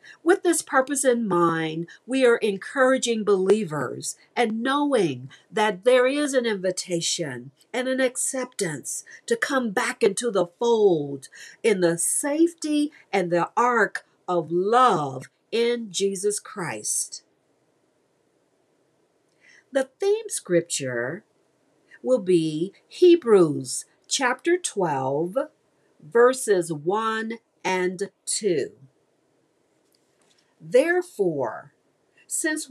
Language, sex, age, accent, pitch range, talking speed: English, female, 50-69, American, 180-295 Hz, 90 wpm